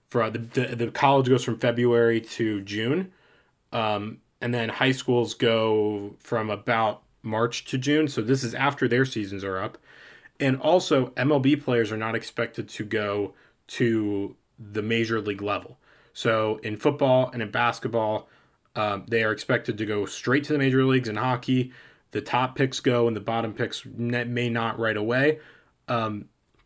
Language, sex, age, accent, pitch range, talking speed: English, male, 20-39, American, 110-135 Hz, 170 wpm